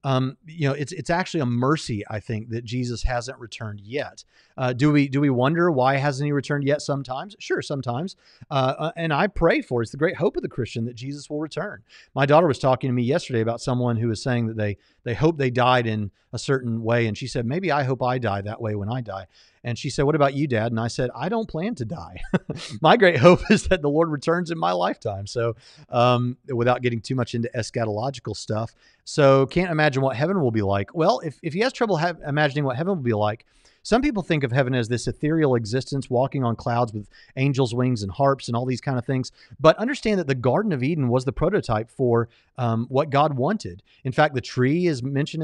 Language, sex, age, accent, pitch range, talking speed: English, male, 40-59, American, 120-155 Hz, 240 wpm